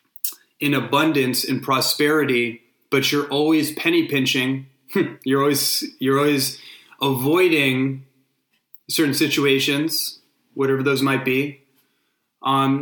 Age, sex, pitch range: 30-49, male, 135-150 Hz